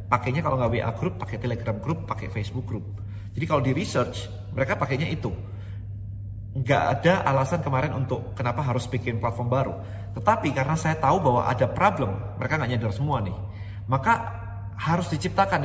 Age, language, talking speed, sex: 30-49, Indonesian, 165 wpm, male